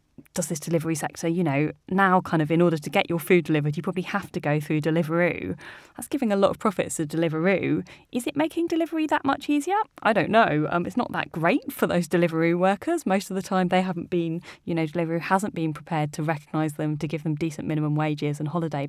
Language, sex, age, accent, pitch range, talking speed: English, female, 20-39, British, 165-235 Hz, 235 wpm